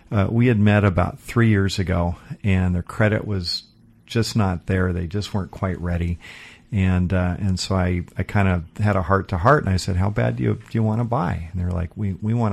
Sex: male